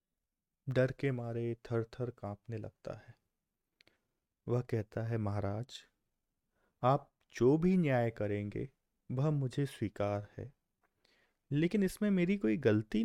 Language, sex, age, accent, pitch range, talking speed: Hindi, male, 30-49, native, 105-140 Hz, 120 wpm